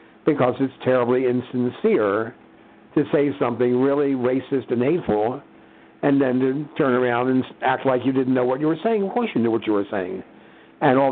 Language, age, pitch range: English, 60-79, 115-140 Hz